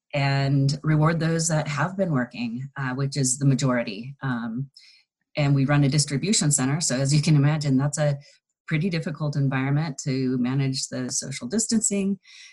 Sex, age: female, 30-49